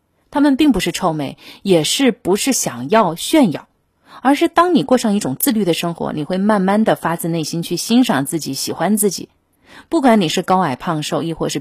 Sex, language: female, Chinese